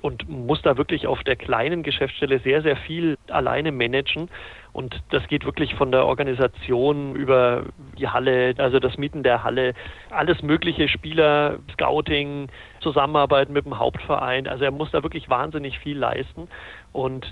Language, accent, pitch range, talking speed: German, German, 125-150 Hz, 155 wpm